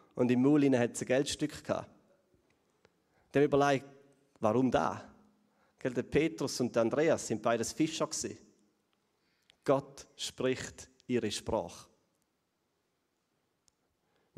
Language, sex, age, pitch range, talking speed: German, male, 30-49, 115-145 Hz, 90 wpm